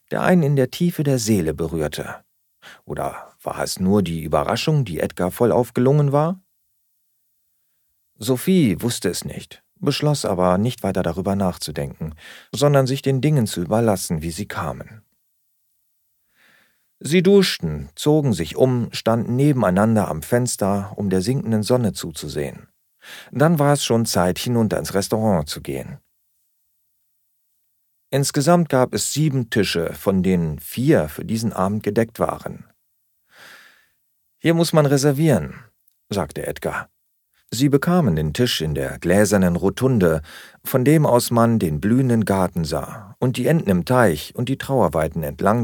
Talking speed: 140 wpm